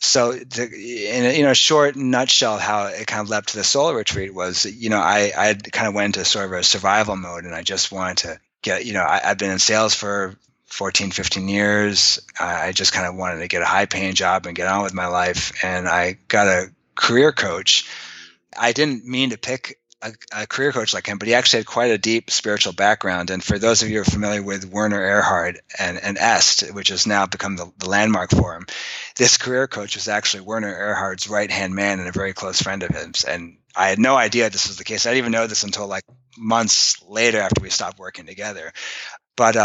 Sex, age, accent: male, 30-49, American